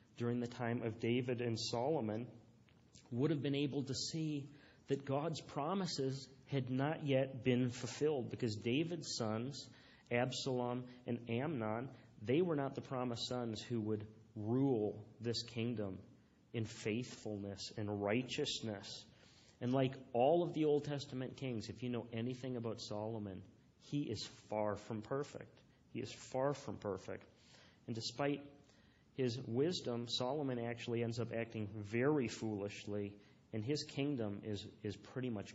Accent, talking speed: American, 140 wpm